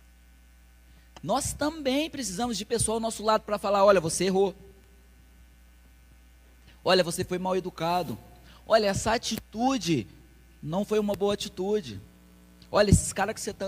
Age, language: 20-39, Portuguese